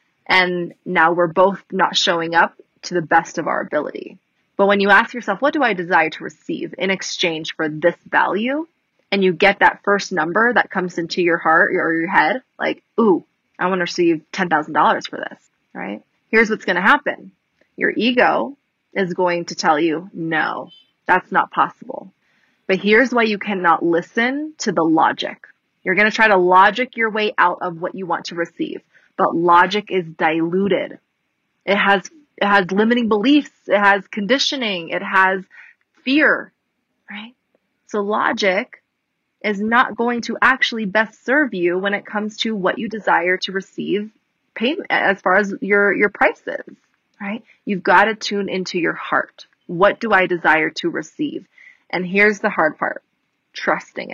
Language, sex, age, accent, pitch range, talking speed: English, female, 20-39, American, 180-225 Hz, 175 wpm